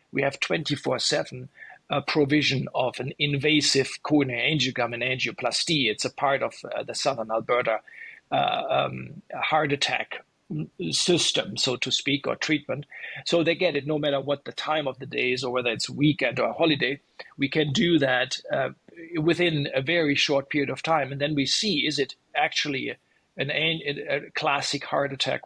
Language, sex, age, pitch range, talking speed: English, male, 40-59, 135-155 Hz, 175 wpm